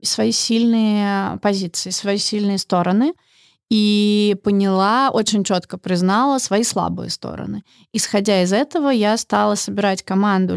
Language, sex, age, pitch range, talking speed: Russian, female, 20-39, 185-225 Hz, 120 wpm